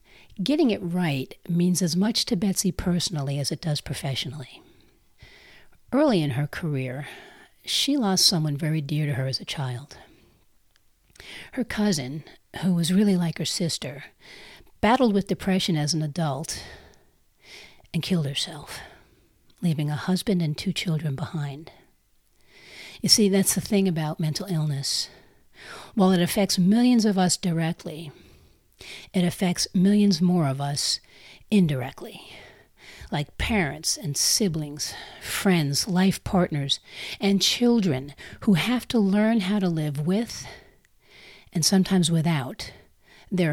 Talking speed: 130 wpm